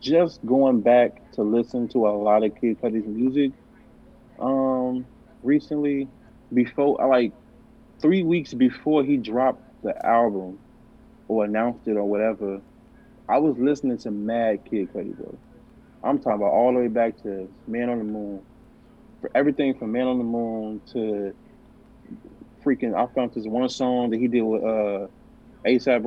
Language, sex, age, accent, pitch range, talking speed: English, male, 20-39, American, 110-125 Hz, 155 wpm